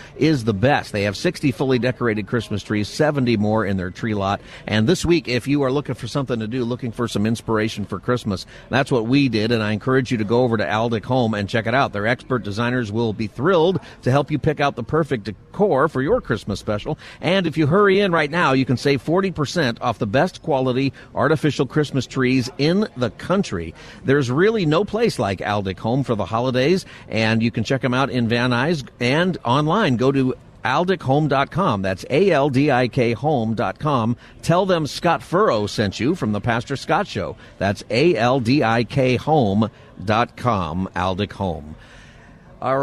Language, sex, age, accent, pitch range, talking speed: English, male, 50-69, American, 110-140 Hz, 185 wpm